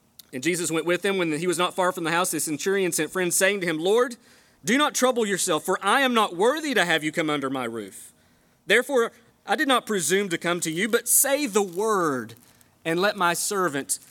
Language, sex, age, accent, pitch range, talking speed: English, male, 30-49, American, 125-195 Hz, 230 wpm